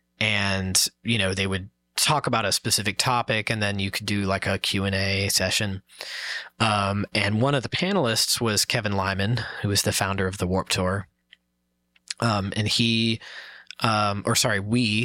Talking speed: 180 wpm